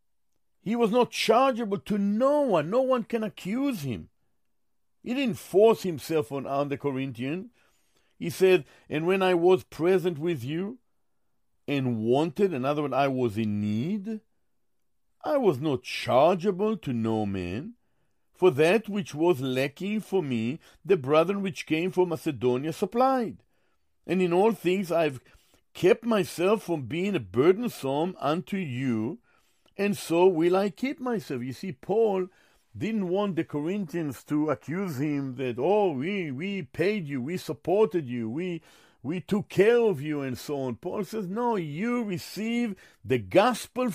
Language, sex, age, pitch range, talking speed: English, male, 50-69, 145-220 Hz, 155 wpm